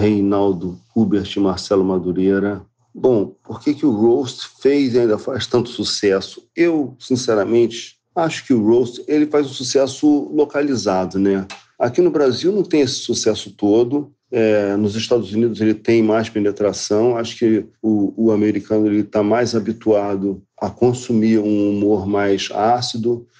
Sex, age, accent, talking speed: male, 40-59, Brazilian, 150 wpm